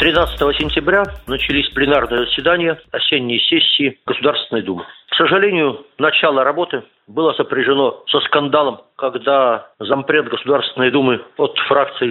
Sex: male